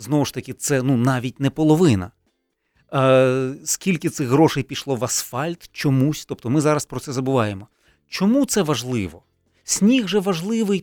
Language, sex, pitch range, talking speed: Ukrainian, male, 130-190 Hz, 155 wpm